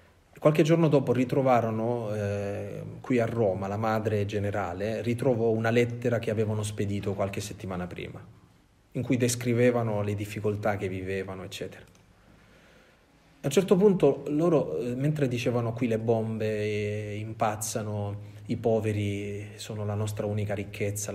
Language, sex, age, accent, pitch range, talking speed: Italian, male, 30-49, native, 105-125 Hz, 135 wpm